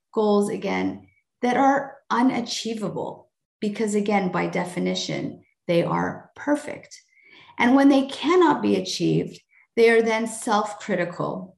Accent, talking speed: American, 115 wpm